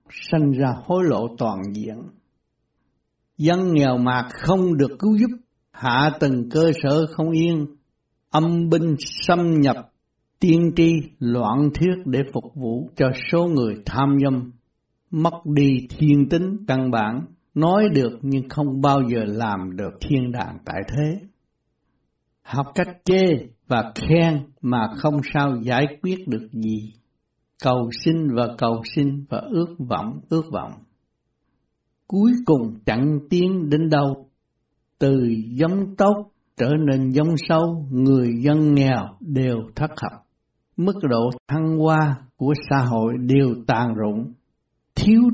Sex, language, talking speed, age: male, Vietnamese, 140 wpm, 60-79